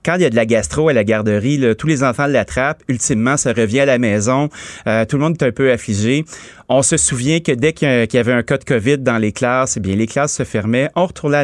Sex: male